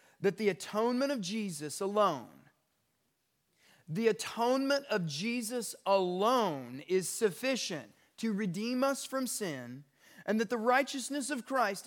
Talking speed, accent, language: 120 wpm, American, English